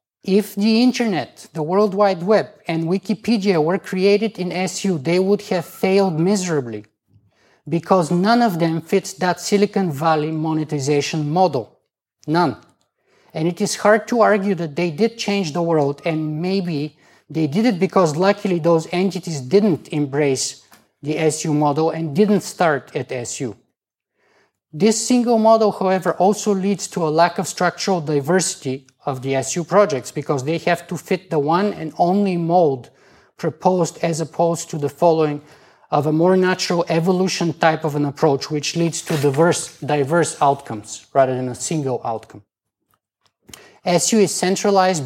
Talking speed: 155 wpm